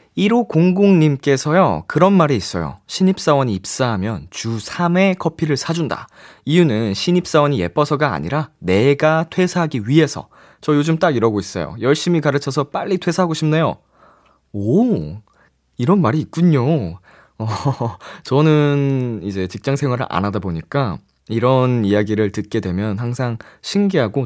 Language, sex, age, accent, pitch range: Korean, male, 20-39, native, 105-160 Hz